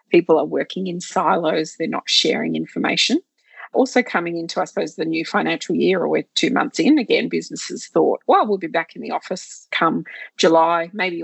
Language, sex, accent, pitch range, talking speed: English, female, Australian, 165-225 Hz, 190 wpm